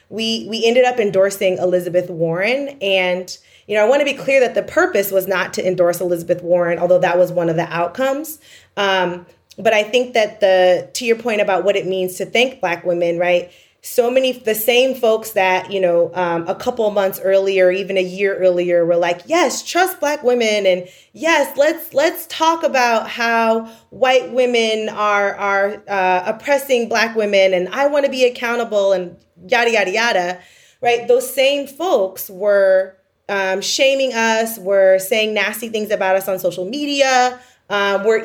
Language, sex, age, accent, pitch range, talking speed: English, female, 20-39, American, 180-245 Hz, 185 wpm